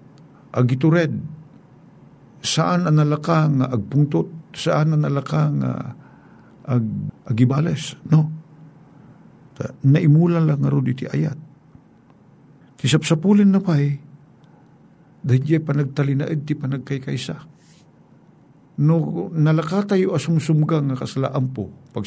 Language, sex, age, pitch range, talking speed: Filipino, male, 50-69, 130-160 Hz, 85 wpm